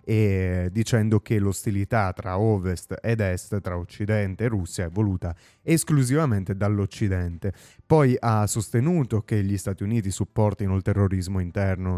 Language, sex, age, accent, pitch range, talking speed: Italian, male, 30-49, native, 95-110 Hz, 135 wpm